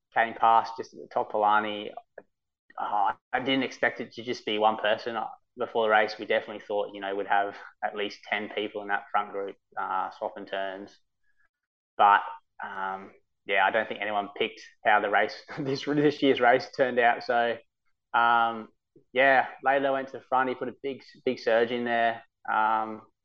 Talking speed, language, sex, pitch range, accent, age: 185 wpm, English, male, 100-115 Hz, Australian, 20-39